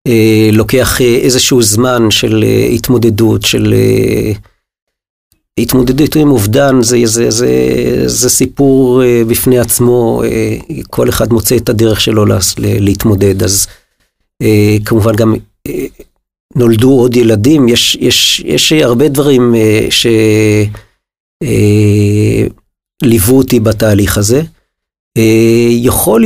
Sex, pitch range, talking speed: male, 110-125 Hz, 125 wpm